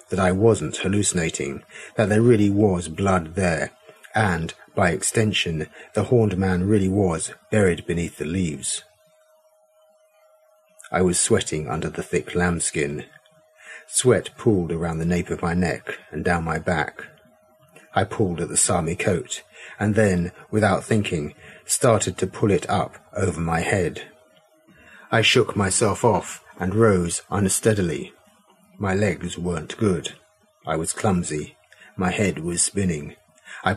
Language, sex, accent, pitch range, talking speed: English, male, British, 90-120 Hz, 140 wpm